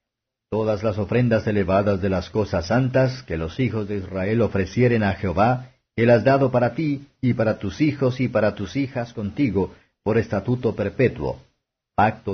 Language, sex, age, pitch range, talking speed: Spanish, male, 50-69, 100-125 Hz, 165 wpm